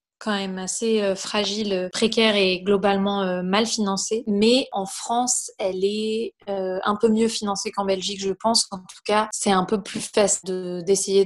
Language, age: French, 20-39